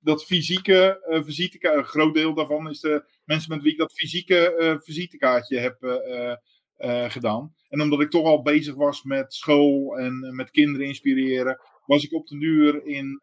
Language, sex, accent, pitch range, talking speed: Dutch, male, Dutch, 140-180 Hz, 190 wpm